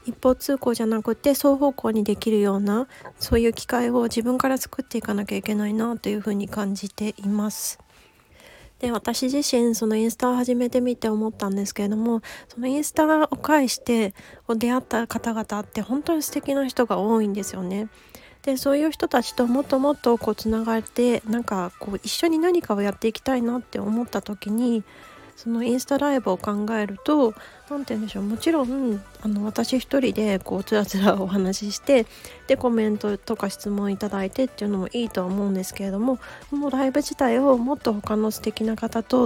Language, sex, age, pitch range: Japanese, female, 30-49, 205-250 Hz